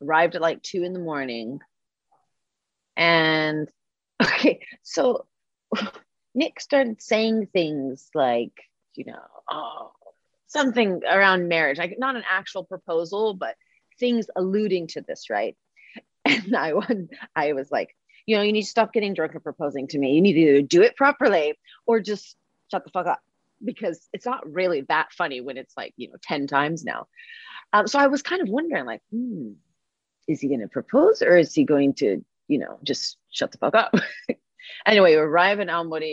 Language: English